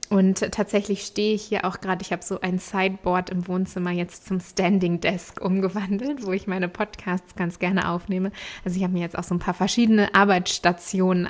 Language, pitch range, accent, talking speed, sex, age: German, 185-220 Hz, German, 195 wpm, female, 20-39